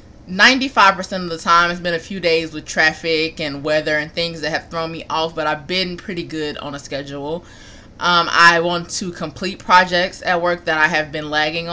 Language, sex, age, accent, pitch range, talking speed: English, female, 20-39, American, 155-185 Hz, 205 wpm